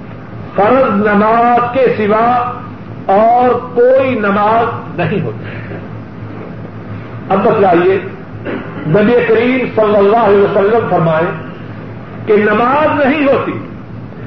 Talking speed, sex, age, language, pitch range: 95 wpm, male, 50-69, Urdu, 205-270 Hz